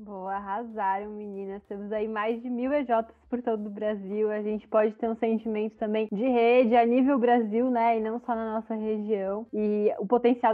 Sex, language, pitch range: female, Portuguese, 215-245 Hz